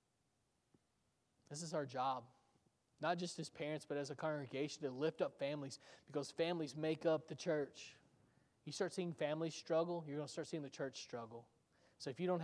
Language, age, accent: English, 20-39, American